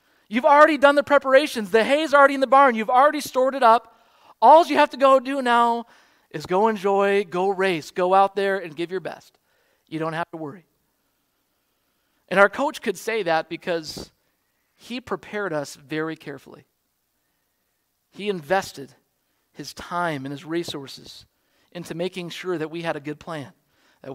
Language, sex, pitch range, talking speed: English, male, 165-225 Hz, 175 wpm